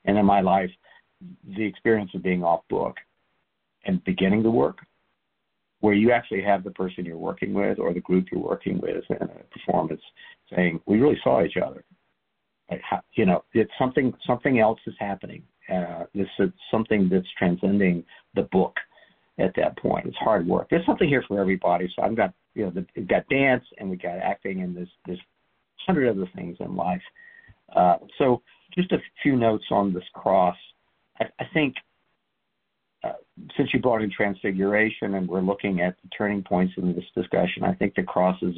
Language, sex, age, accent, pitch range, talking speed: English, male, 50-69, American, 90-110 Hz, 185 wpm